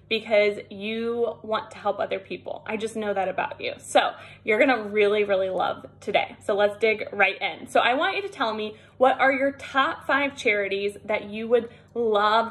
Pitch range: 210-270 Hz